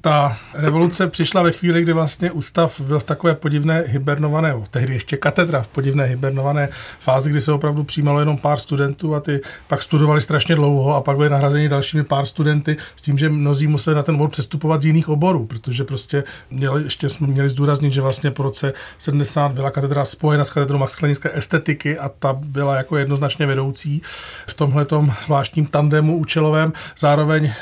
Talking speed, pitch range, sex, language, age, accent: 180 wpm, 135-155 Hz, male, Czech, 40-59, native